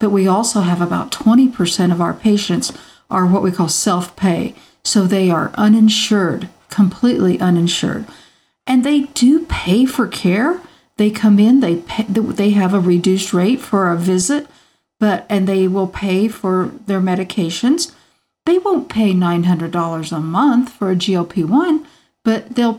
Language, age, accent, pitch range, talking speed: English, 50-69, American, 185-235 Hz, 155 wpm